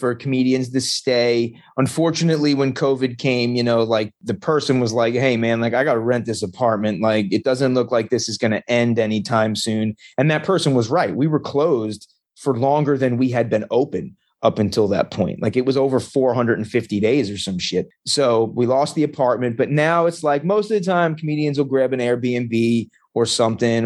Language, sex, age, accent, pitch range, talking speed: English, male, 30-49, American, 110-135 Hz, 210 wpm